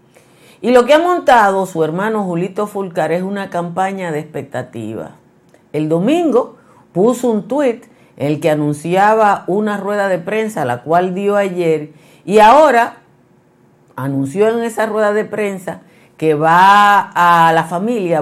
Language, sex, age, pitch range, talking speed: Spanish, female, 50-69, 145-205 Hz, 145 wpm